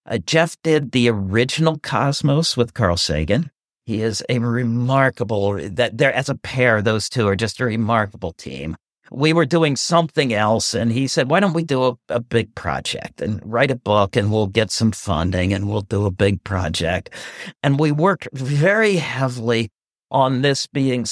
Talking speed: 180 wpm